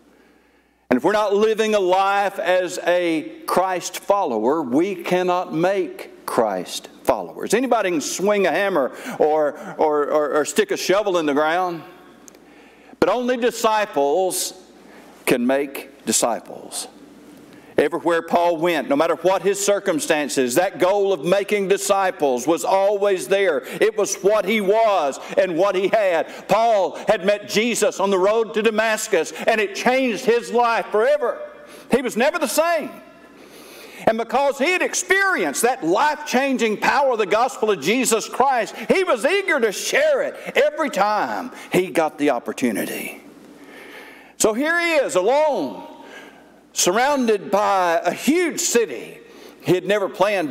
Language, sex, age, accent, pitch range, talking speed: English, male, 60-79, American, 185-285 Hz, 145 wpm